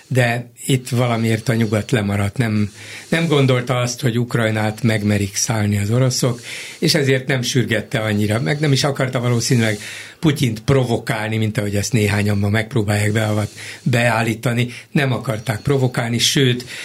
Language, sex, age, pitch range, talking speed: Hungarian, male, 60-79, 110-135 Hz, 140 wpm